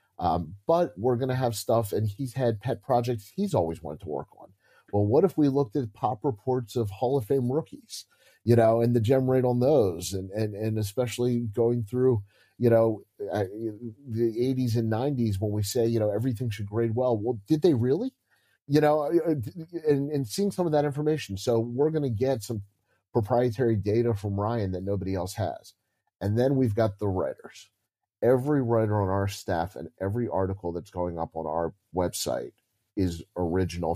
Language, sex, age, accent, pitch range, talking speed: English, male, 30-49, American, 95-125 Hz, 190 wpm